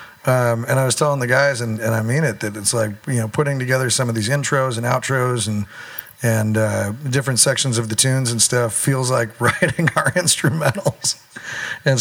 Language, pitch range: English, 110-135 Hz